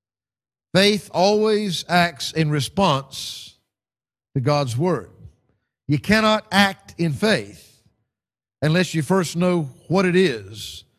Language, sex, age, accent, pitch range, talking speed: English, male, 50-69, American, 120-175 Hz, 110 wpm